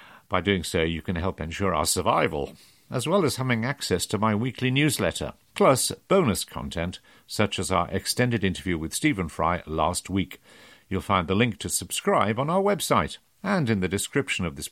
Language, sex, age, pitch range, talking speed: English, male, 50-69, 90-130 Hz, 190 wpm